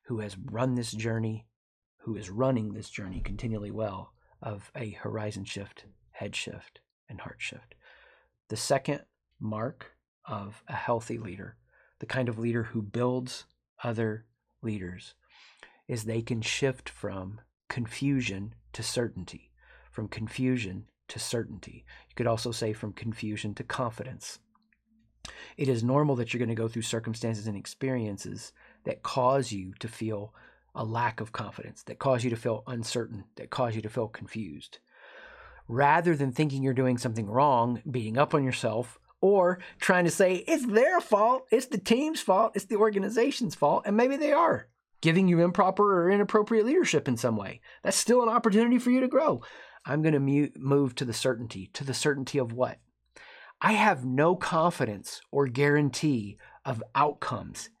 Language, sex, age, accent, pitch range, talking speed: English, male, 40-59, American, 110-150 Hz, 160 wpm